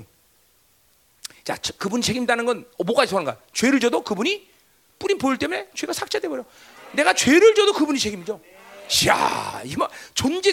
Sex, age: male, 40-59